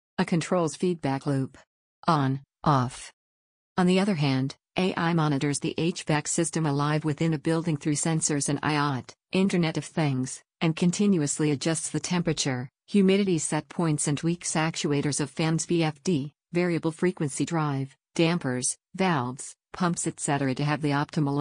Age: 50-69